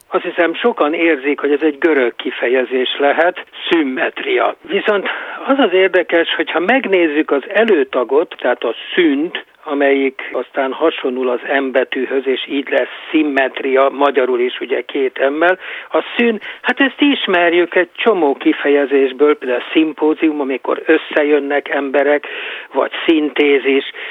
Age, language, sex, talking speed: 60-79, Hungarian, male, 130 wpm